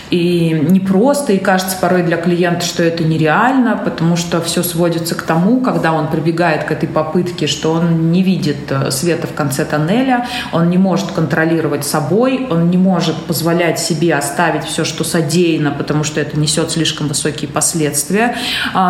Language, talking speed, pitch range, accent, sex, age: Russian, 160 wpm, 150-185 Hz, native, female, 20-39